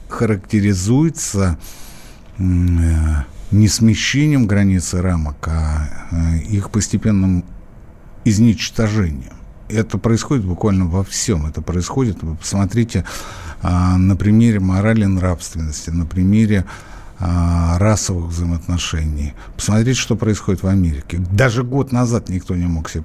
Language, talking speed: Russian, 100 wpm